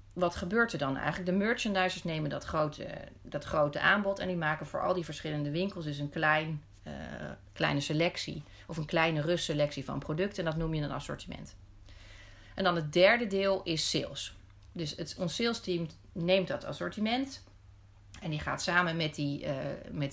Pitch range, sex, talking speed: 145-185 Hz, female, 180 wpm